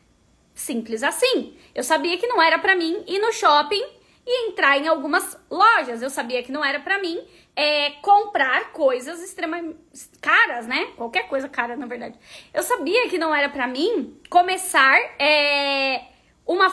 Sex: female